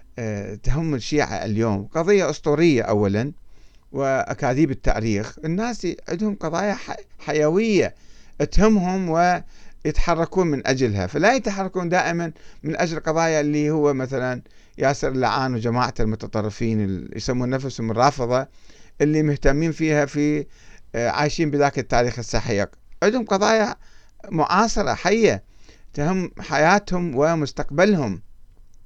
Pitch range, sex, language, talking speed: 115-170 Hz, male, Arabic, 100 wpm